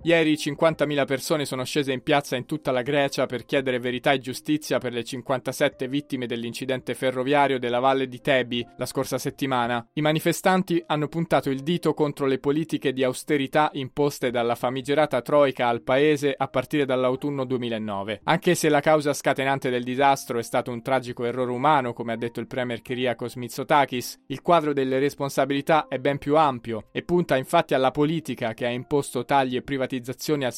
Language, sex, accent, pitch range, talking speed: Italian, male, native, 125-150 Hz, 175 wpm